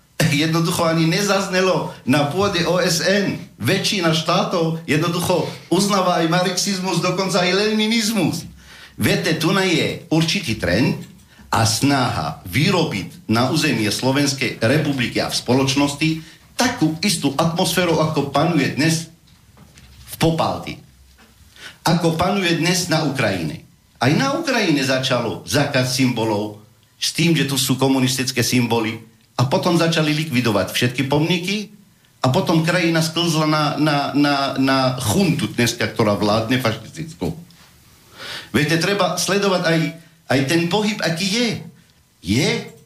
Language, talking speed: Slovak, 120 wpm